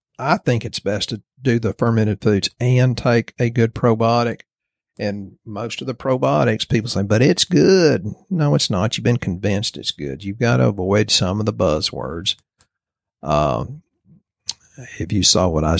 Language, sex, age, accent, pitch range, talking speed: English, male, 50-69, American, 95-120 Hz, 175 wpm